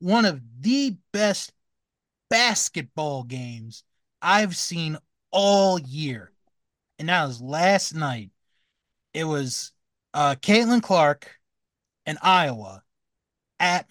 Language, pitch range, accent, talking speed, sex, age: English, 130-195 Hz, American, 100 wpm, male, 30-49